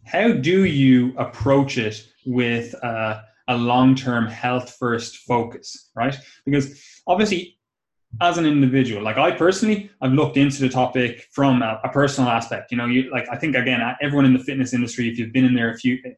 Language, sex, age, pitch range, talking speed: English, male, 20-39, 120-140 Hz, 180 wpm